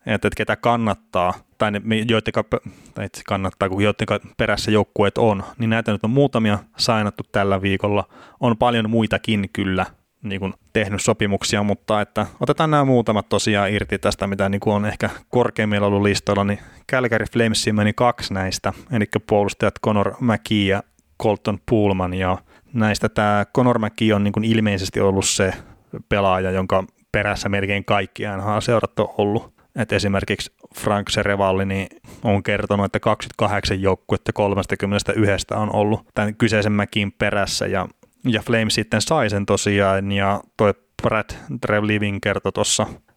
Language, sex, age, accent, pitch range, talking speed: Finnish, male, 30-49, native, 100-110 Hz, 140 wpm